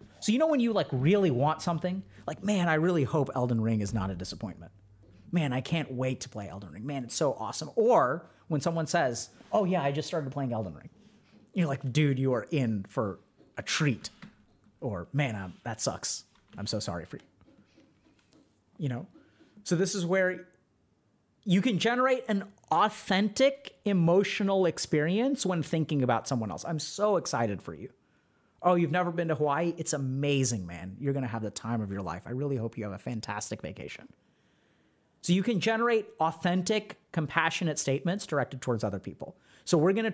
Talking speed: 190 wpm